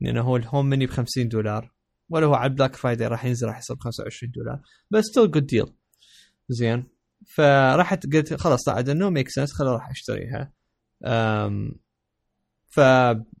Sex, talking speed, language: male, 160 wpm, Arabic